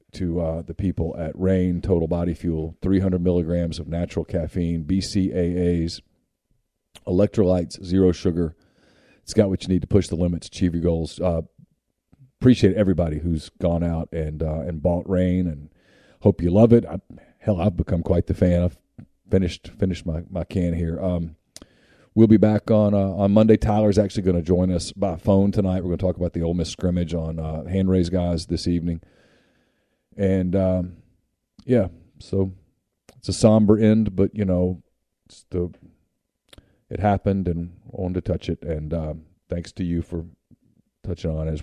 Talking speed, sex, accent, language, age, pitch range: 175 wpm, male, American, English, 40-59, 85-100 Hz